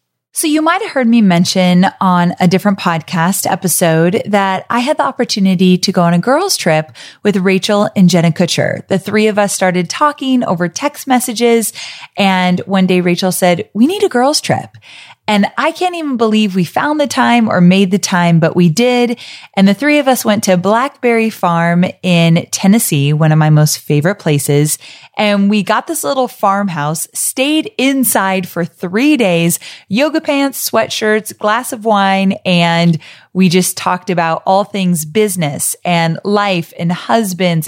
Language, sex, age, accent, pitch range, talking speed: English, female, 30-49, American, 175-230 Hz, 175 wpm